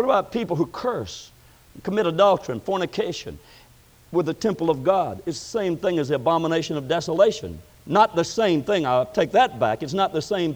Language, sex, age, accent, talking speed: English, male, 60-79, American, 200 wpm